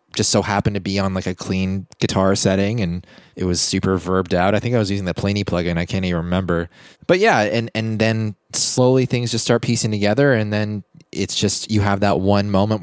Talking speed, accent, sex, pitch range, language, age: 230 wpm, American, male, 90-105 Hz, English, 20-39